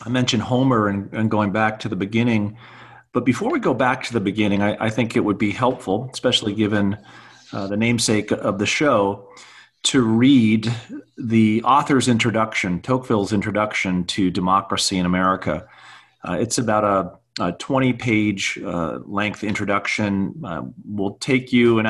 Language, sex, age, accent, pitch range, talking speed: English, male, 40-59, American, 100-115 Hz, 160 wpm